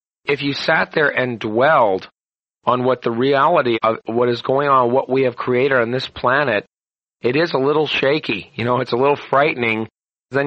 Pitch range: 115-135 Hz